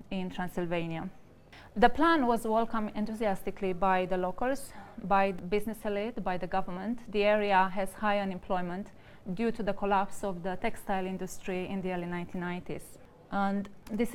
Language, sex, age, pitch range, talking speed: English, female, 20-39, 185-215 Hz, 155 wpm